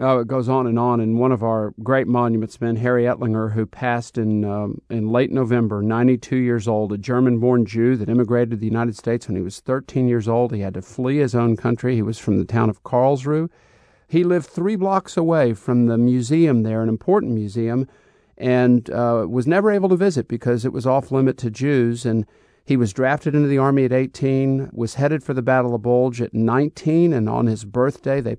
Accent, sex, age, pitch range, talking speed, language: American, male, 50-69, 115-140 Hz, 215 wpm, English